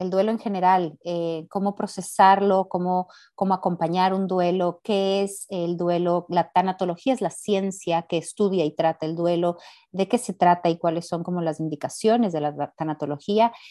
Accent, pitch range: Mexican, 165-205 Hz